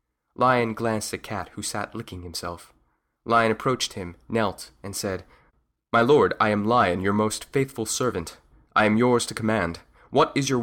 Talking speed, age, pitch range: 175 wpm, 20-39, 95-120 Hz